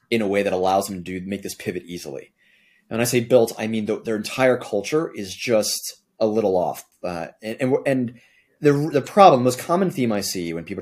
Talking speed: 220 wpm